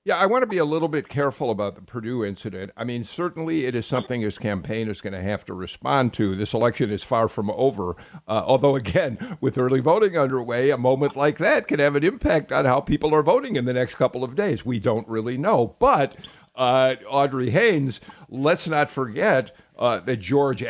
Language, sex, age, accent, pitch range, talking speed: English, male, 50-69, American, 115-145 Hz, 215 wpm